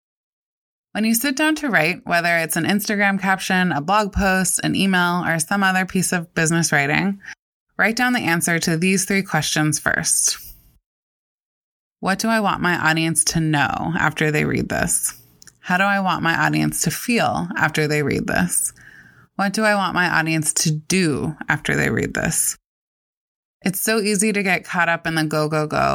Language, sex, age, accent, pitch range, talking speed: English, female, 20-39, American, 160-200 Hz, 180 wpm